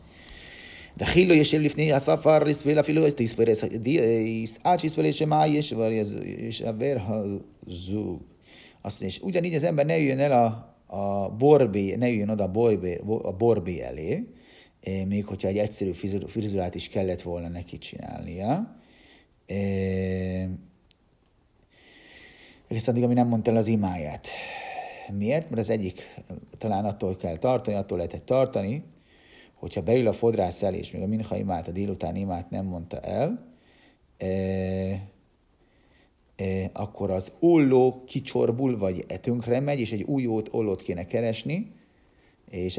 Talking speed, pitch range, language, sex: 130 wpm, 95-130 Hz, Hungarian, male